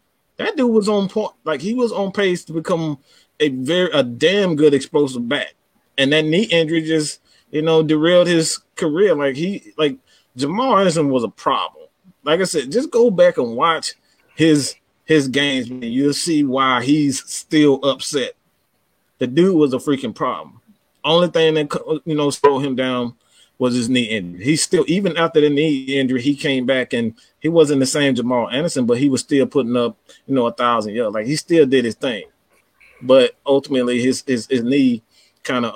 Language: English